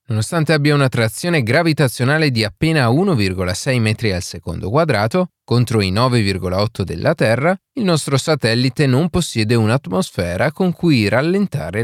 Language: Italian